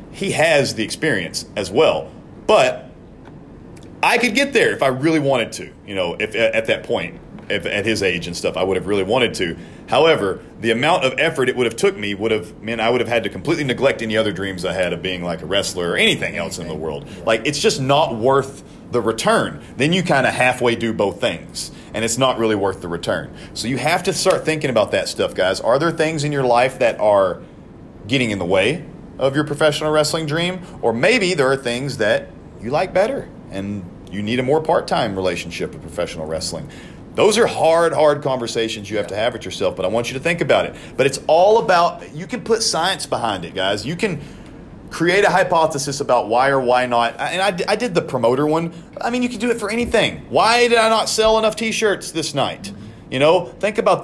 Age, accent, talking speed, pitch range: 40-59, American, 230 wpm, 110-180 Hz